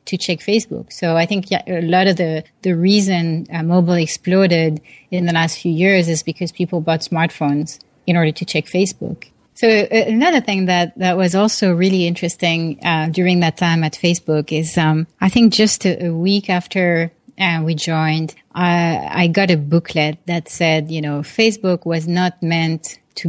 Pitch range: 160-185 Hz